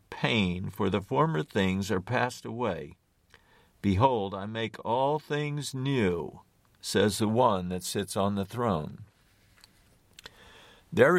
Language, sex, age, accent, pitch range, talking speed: English, male, 50-69, American, 95-135 Hz, 125 wpm